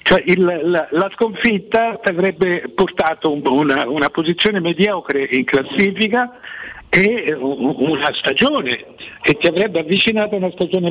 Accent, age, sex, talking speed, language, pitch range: native, 60-79, male, 140 wpm, Italian, 155-215 Hz